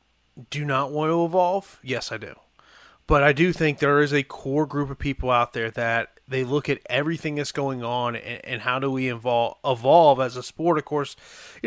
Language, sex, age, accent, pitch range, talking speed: English, male, 30-49, American, 125-170 Hz, 215 wpm